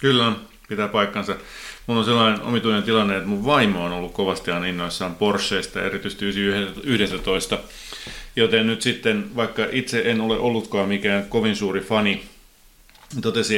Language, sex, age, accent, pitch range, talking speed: Finnish, male, 30-49, native, 95-115 Hz, 135 wpm